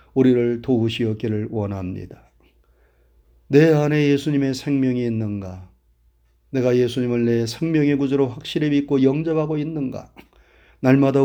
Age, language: 30-49, Korean